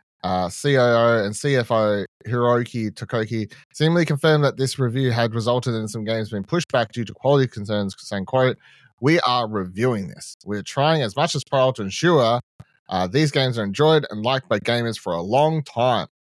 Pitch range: 105-145 Hz